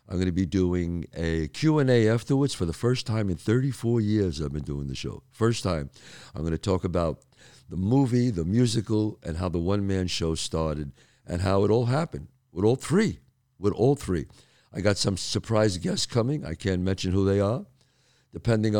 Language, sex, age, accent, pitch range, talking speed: English, male, 50-69, American, 95-130 Hz, 195 wpm